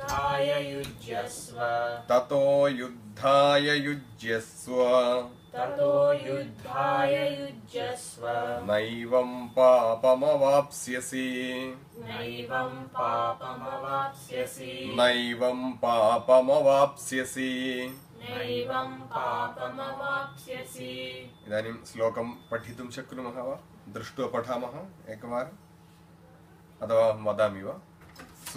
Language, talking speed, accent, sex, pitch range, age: English, 40 wpm, Indian, male, 120-140 Hz, 30-49